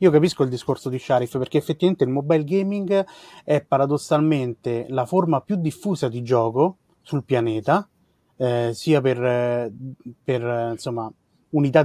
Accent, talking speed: native, 135 wpm